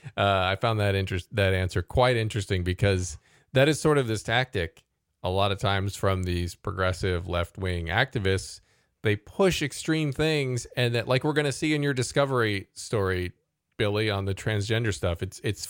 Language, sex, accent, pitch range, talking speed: English, male, American, 95-135 Hz, 180 wpm